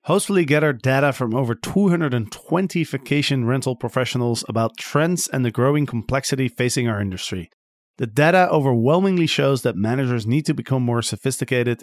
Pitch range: 120-145 Hz